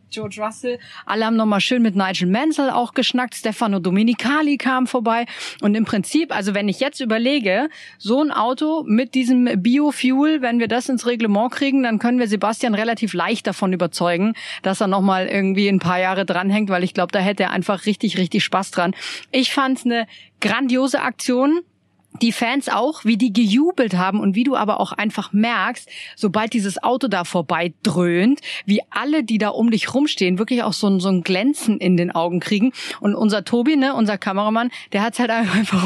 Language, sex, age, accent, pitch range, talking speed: German, female, 40-59, German, 200-250 Hz, 190 wpm